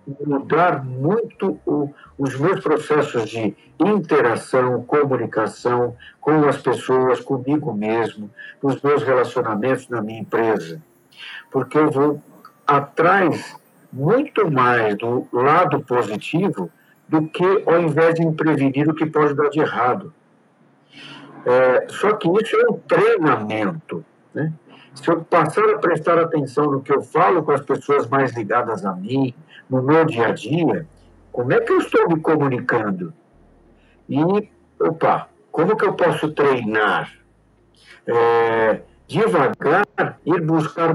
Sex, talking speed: male, 130 wpm